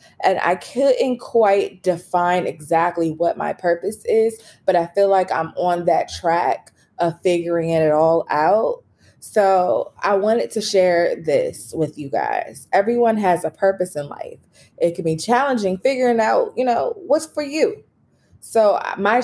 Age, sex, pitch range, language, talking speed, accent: 20-39, female, 165-215 Hz, English, 160 wpm, American